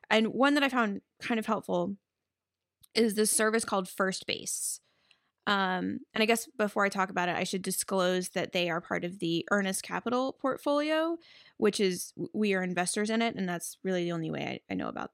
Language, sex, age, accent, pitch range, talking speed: English, female, 10-29, American, 180-225 Hz, 205 wpm